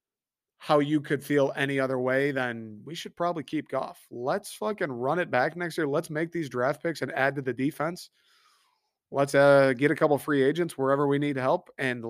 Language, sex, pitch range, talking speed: English, male, 130-170 Hz, 215 wpm